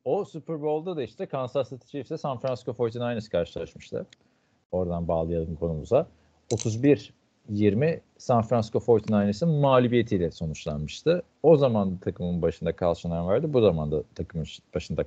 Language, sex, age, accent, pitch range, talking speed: Turkish, male, 40-59, native, 85-115 Hz, 125 wpm